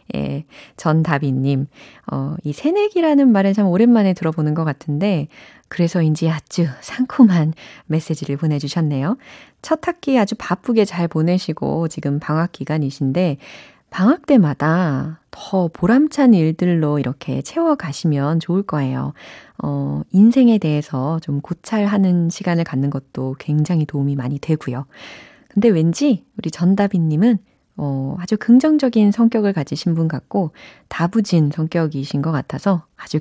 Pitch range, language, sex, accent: 150-225 Hz, Korean, female, native